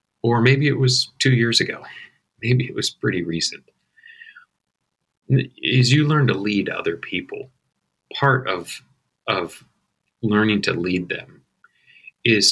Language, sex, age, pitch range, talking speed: English, male, 40-59, 105-165 Hz, 130 wpm